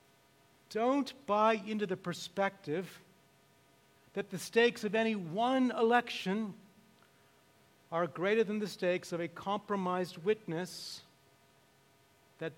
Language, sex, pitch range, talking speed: English, male, 170-230 Hz, 105 wpm